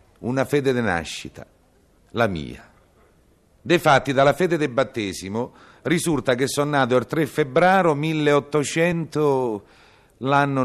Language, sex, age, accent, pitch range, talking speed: Italian, male, 50-69, native, 105-145 Hz, 120 wpm